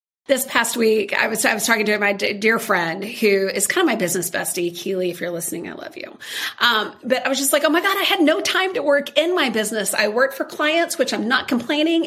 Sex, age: female, 40-59